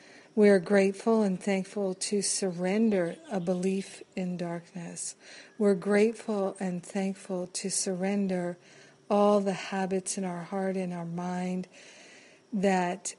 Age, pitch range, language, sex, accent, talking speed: 50-69, 185-200 Hz, English, female, American, 125 wpm